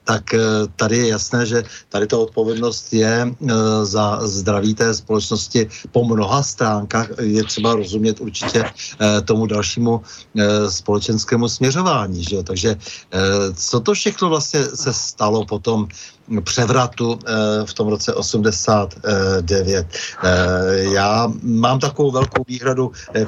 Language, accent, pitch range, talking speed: Czech, native, 110-130 Hz, 130 wpm